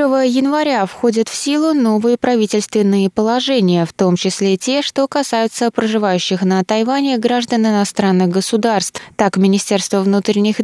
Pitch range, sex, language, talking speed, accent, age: 180-230 Hz, female, Russian, 130 wpm, native, 20-39